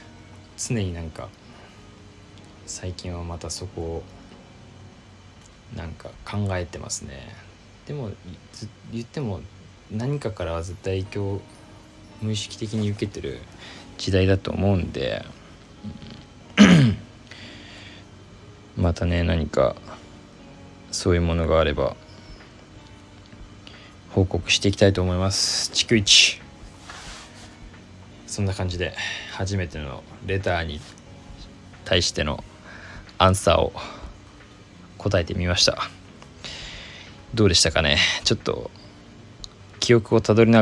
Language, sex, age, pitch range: Japanese, male, 20-39, 90-105 Hz